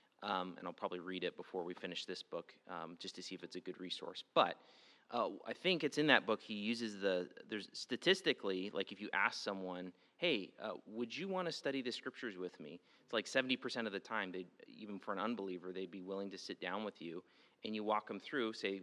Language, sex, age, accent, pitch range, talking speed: English, male, 30-49, American, 95-130 Hz, 235 wpm